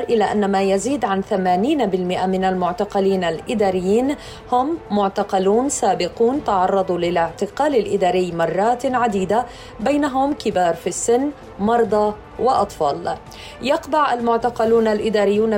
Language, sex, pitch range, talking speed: Arabic, female, 190-235 Hz, 100 wpm